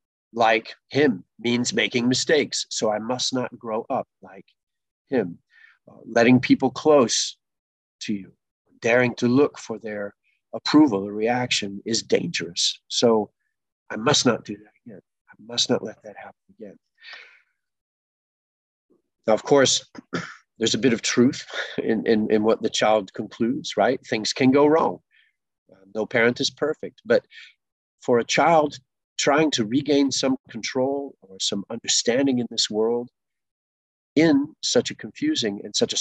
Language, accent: English, American